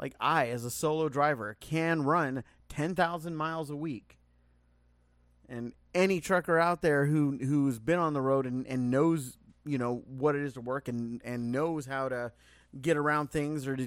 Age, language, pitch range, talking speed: 30-49, English, 125-160 Hz, 185 wpm